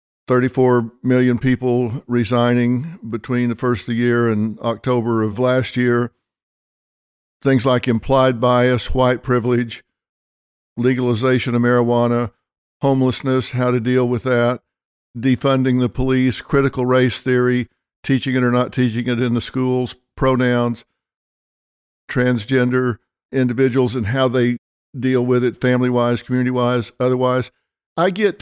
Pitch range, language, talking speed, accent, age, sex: 120-130 Hz, English, 125 wpm, American, 50-69, male